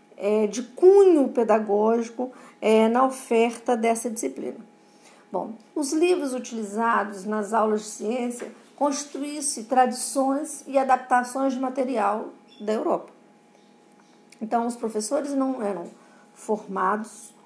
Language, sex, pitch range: Portuguese, female, 225-280 Hz